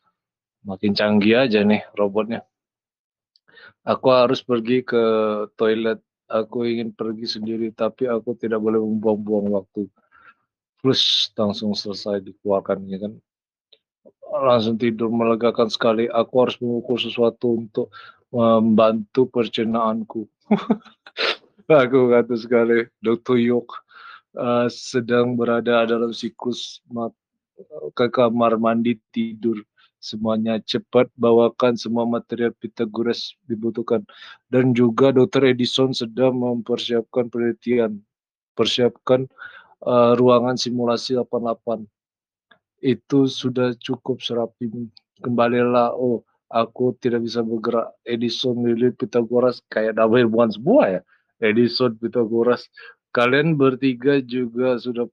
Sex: male